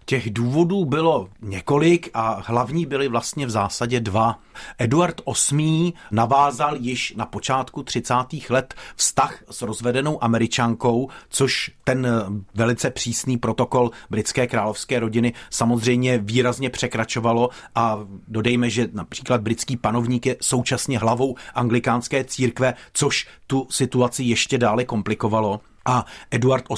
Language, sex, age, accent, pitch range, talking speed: Czech, male, 40-59, native, 115-135 Hz, 120 wpm